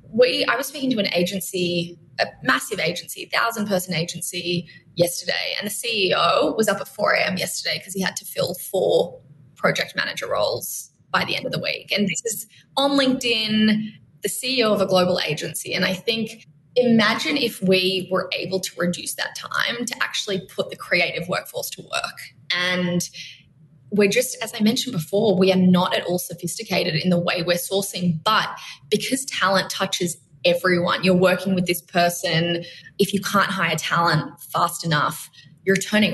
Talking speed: 175 wpm